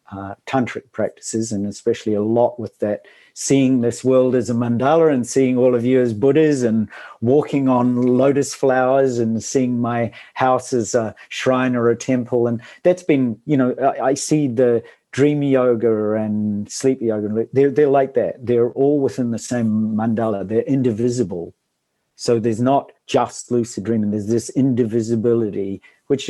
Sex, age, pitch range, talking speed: male, 50-69, 110-130 Hz, 165 wpm